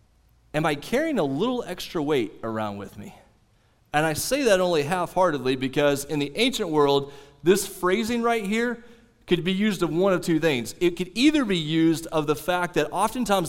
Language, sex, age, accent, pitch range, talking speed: English, male, 30-49, American, 160-215 Hz, 190 wpm